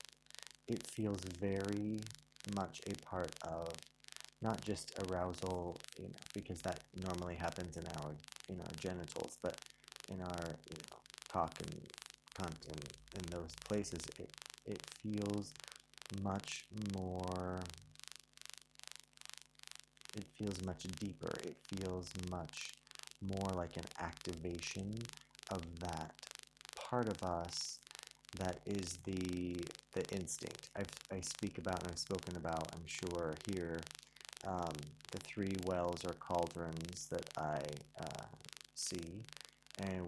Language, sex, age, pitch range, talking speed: English, male, 30-49, 85-95 Hz, 120 wpm